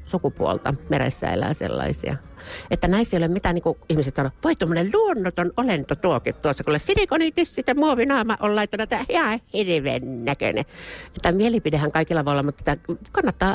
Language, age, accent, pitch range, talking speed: Finnish, 50-69, native, 125-180 Hz, 155 wpm